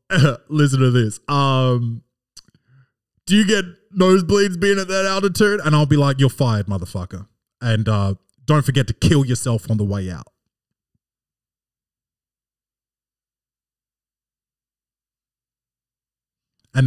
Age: 20-39